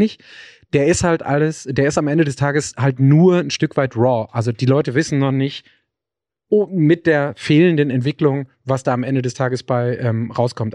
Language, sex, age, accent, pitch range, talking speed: German, male, 30-49, German, 125-150 Hz, 205 wpm